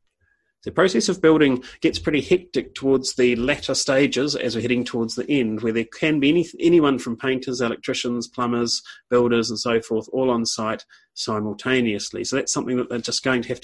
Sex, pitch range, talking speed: male, 105-135 Hz, 190 wpm